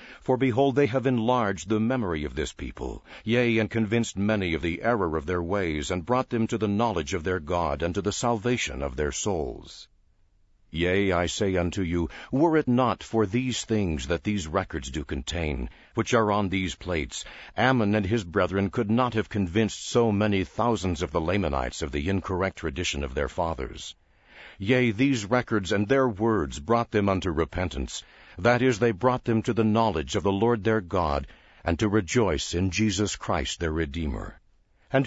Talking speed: 190 wpm